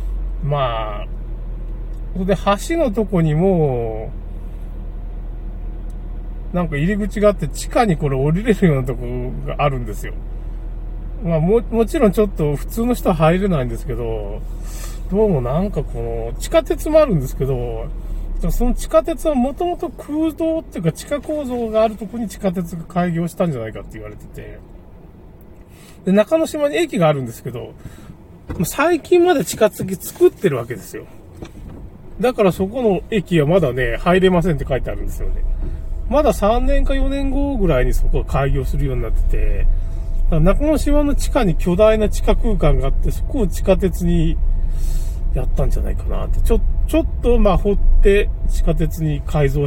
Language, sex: Japanese, male